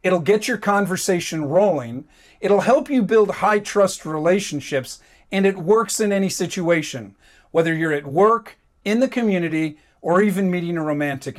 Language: English